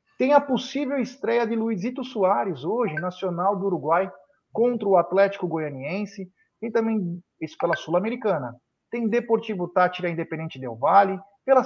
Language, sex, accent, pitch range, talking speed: Portuguese, male, Brazilian, 170-230 Hz, 140 wpm